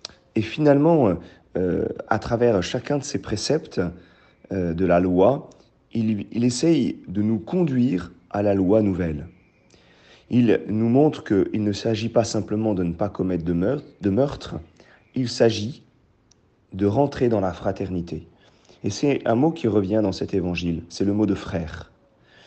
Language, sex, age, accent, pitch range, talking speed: French, male, 40-59, French, 95-120 Hz, 160 wpm